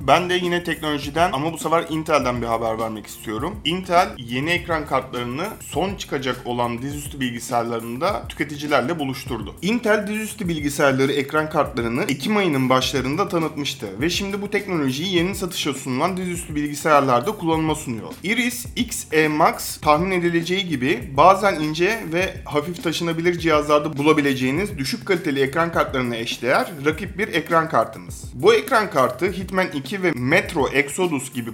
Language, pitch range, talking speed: Turkish, 135-180 Hz, 140 wpm